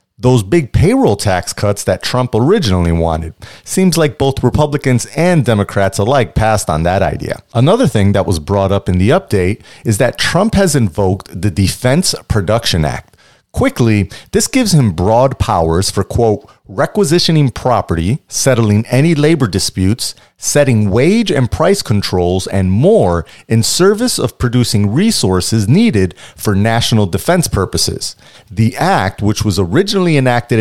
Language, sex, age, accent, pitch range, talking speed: English, male, 40-59, American, 100-140 Hz, 145 wpm